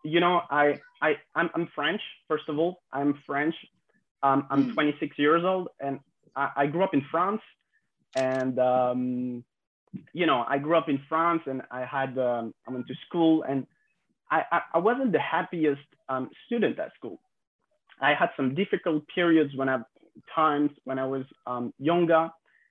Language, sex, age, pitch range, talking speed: English, male, 20-39, 135-165 Hz, 170 wpm